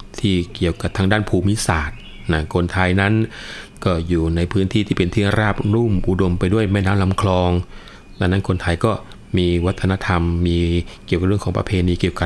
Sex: male